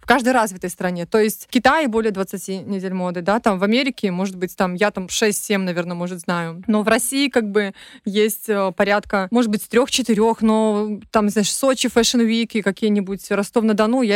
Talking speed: 190 wpm